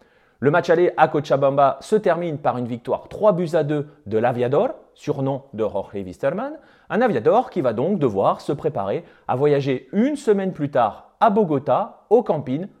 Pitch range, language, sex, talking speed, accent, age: 140-220 Hz, French, male, 180 wpm, French, 30-49